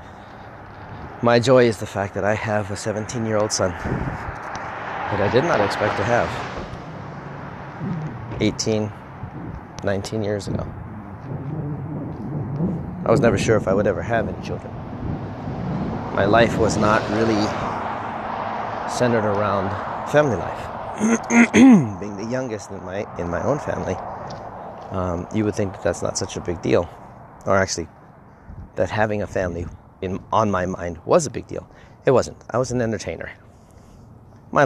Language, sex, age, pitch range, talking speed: English, male, 30-49, 95-115 Hz, 140 wpm